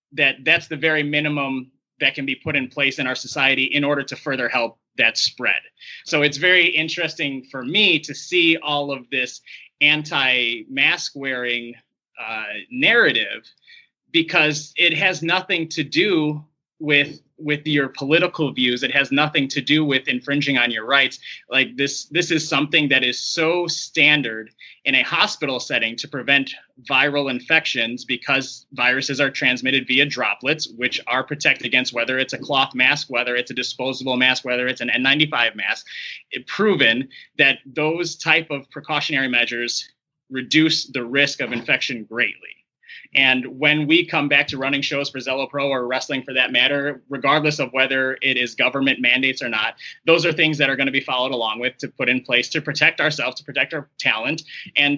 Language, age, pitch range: English, 20-39, 130-155 Hz